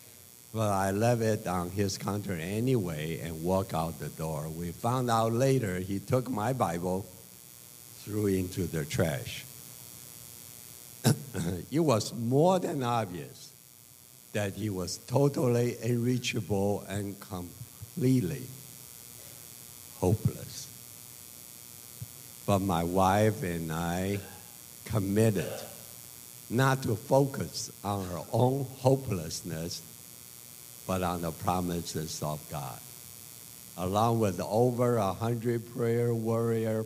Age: 60-79